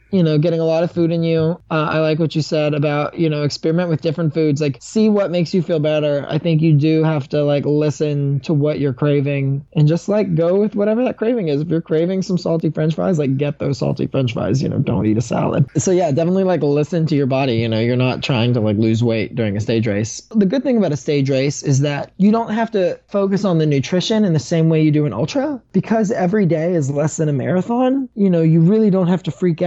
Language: English